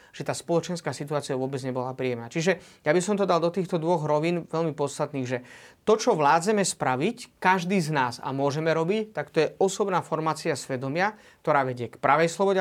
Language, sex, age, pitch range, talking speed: Slovak, male, 30-49, 140-175 Hz, 195 wpm